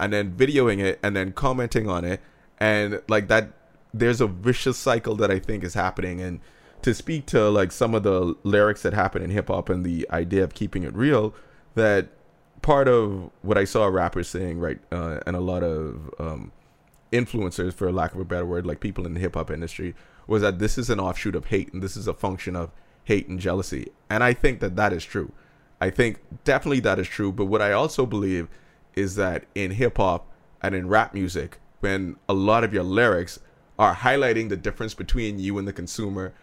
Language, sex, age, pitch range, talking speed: English, male, 20-39, 90-110 Hz, 210 wpm